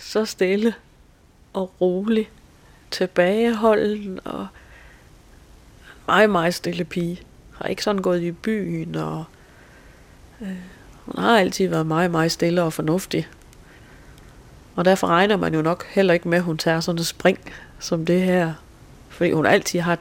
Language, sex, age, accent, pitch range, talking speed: Danish, female, 30-49, native, 160-195 Hz, 145 wpm